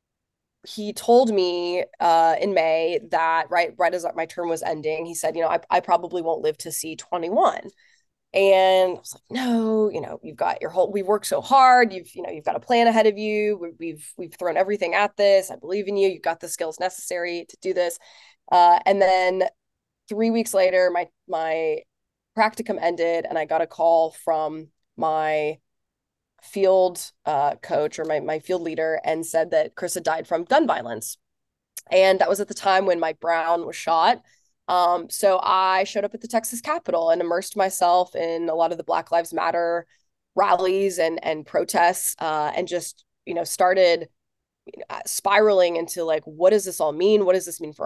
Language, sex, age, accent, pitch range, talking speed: English, female, 20-39, American, 165-195 Hz, 195 wpm